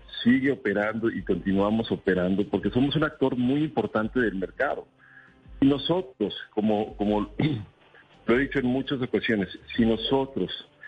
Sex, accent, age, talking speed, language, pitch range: male, Mexican, 50-69, 130 wpm, Spanish, 105-130 Hz